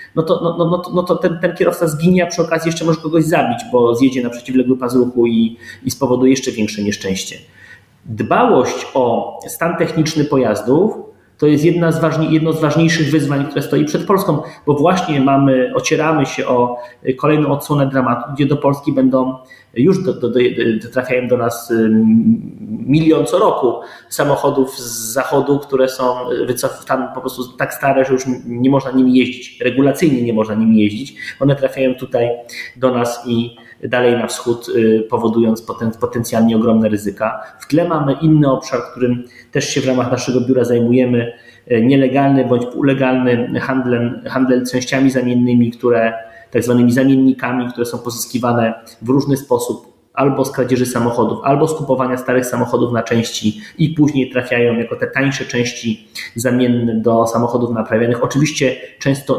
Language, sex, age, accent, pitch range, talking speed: Polish, male, 30-49, native, 120-140 Hz, 160 wpm